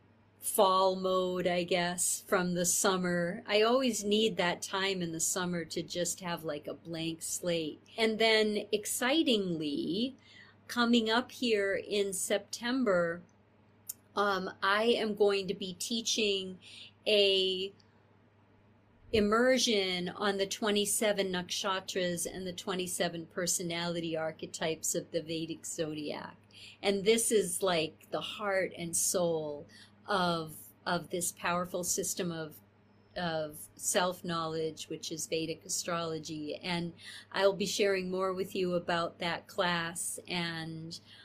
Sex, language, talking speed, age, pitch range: female, English, 120 wpm, 40-59, 165-205 Hz